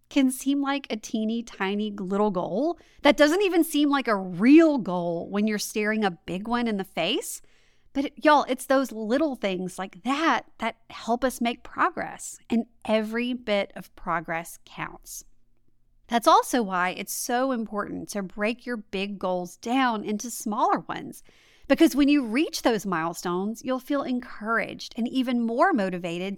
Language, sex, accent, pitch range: English, female, American, 195-280 Hz